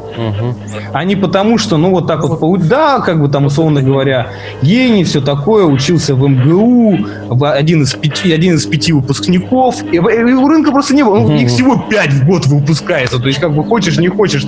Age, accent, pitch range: 20-39, native, 130-175 Hz